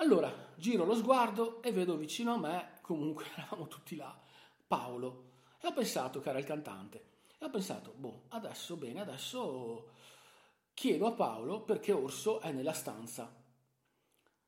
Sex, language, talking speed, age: male, Italian, 145 wpm, 40-59